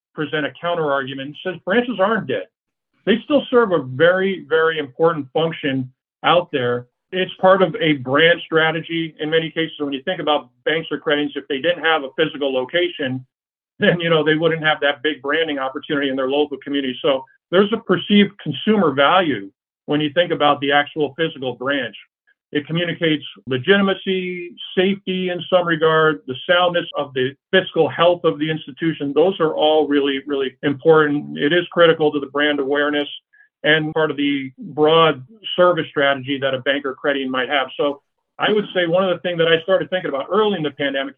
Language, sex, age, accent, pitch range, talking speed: English, male, 50-69, American, 140-175 Hz, 185 wpm